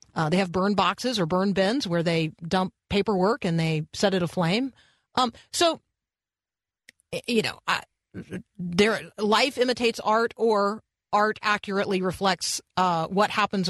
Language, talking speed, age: English, 135 wpm, 40-59